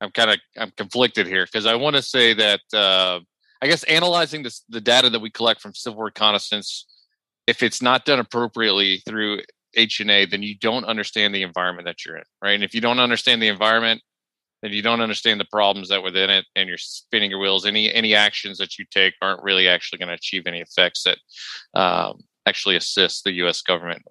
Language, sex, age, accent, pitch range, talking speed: English, male, 30-49, American, 100-120 Hz, 210 wpm